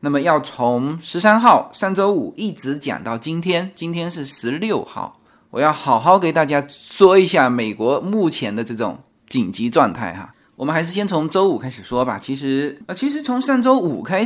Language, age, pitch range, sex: Chinese, 20-39, 140-220 Hz, male